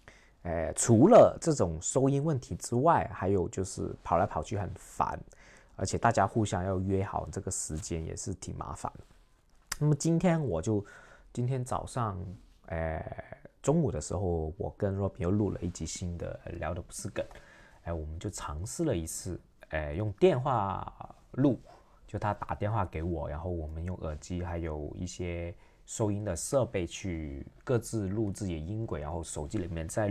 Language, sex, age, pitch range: Chinese, male, 20-39, 80-105 Hz